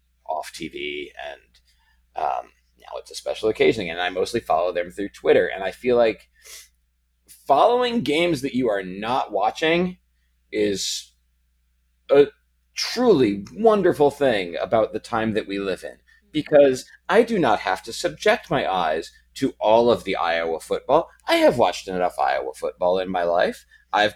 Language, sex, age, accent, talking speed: English, male, 30-49, American, 160 wpm